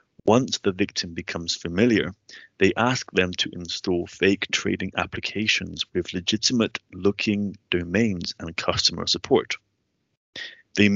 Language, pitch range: English, 90-105 Hz